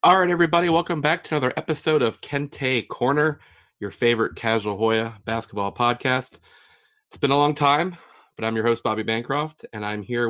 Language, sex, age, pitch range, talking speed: English, male, 30-49, 110-140 Hz, 180 wpm